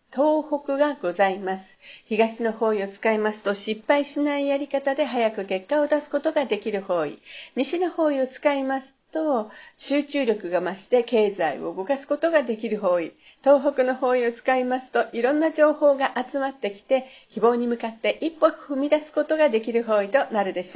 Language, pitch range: Japanese, 205-280 Hz